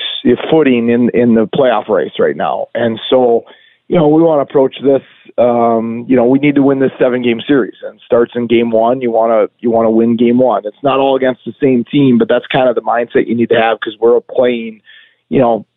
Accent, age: American, 40-59